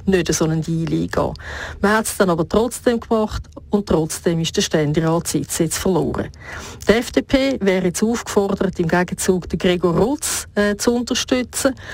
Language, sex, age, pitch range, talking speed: German, female, 50-69, 165-210 Hz, 160 wpm